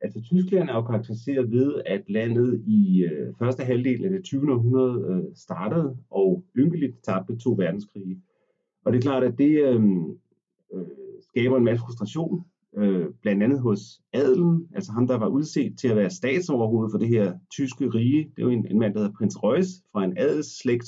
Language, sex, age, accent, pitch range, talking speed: Danish, male, 30-49, native, 110-145 Hz, 185 wpm